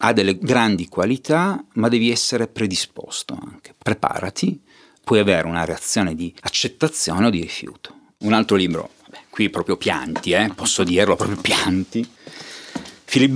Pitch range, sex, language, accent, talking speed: 90-120 Hz, male, Italian, native, 145 wpm